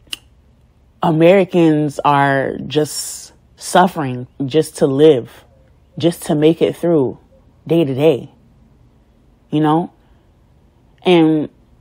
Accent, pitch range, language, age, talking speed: American, 140-210 Hz, English, 30-49, 90 wpm